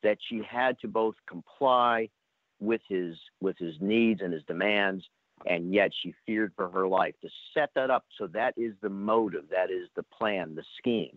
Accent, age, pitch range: American, 50-69, 95-140 Hz